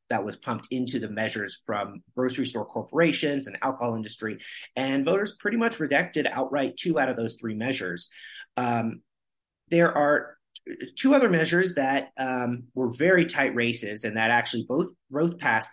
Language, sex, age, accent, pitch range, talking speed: English, male, 30-49, American, 115-150 Hz, 165 wpm